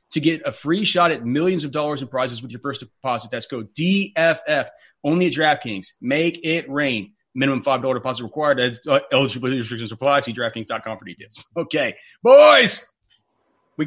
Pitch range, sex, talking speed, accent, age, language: 130-160 Hz, male, 165 wpm, American, 30-49, English